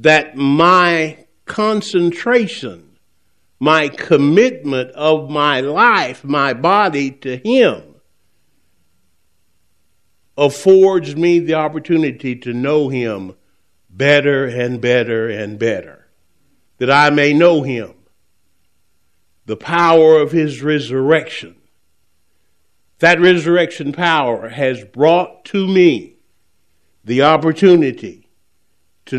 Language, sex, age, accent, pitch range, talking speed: English, male, 60-79, American, 115-170 Hz, 90 wpm